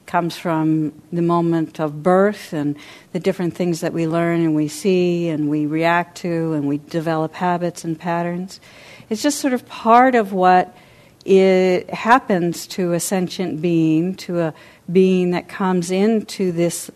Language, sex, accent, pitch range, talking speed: English, female, American, 160-185 Hz, 165 wpm